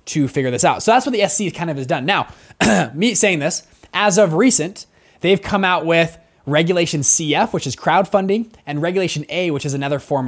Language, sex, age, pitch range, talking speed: English, male, 20-39, 140-185 Hz, 210 wpm